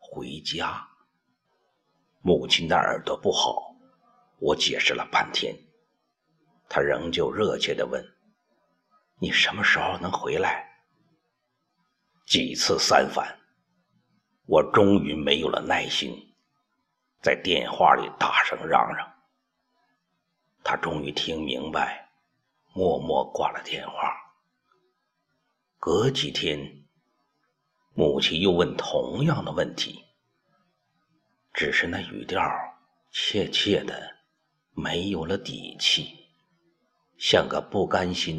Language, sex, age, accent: Chinese, male, 50-69, native